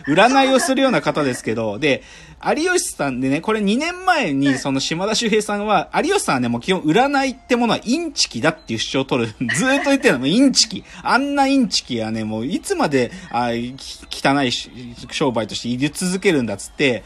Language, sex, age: Japanese, male, 40-59